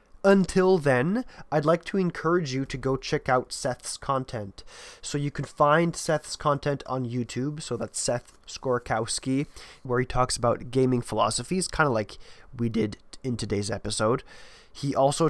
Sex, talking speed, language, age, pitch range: male, 160 wpm, English, 20-39, 115-150 Hz